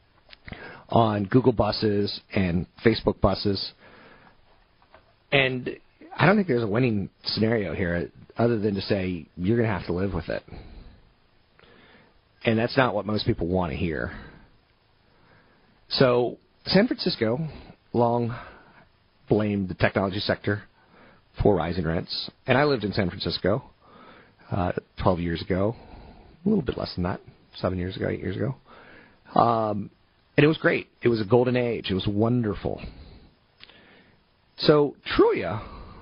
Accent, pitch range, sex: American, 95-120 Hz, male